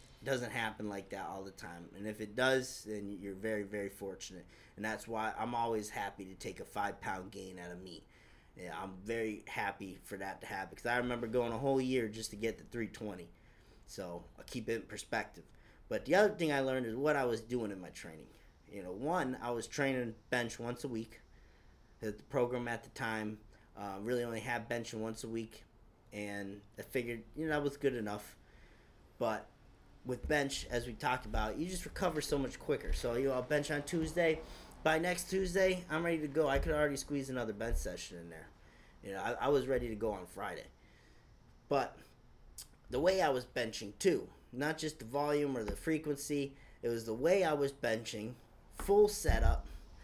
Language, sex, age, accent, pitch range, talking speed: English, male, 30-49, American, 110-140 Hz, 205 wpm